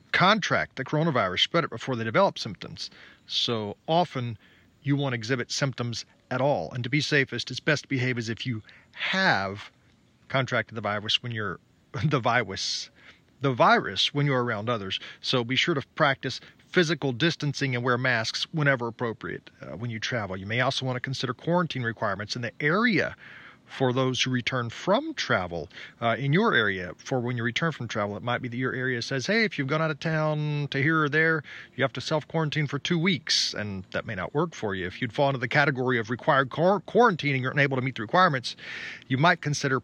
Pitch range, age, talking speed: 115-145 Hz, 40-59, 205 wpm